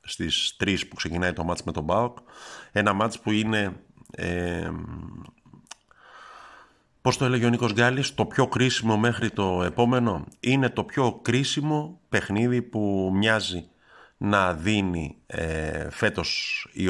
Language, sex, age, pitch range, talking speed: Greek, male, 50-69, 90-115 Hz, 130 wpm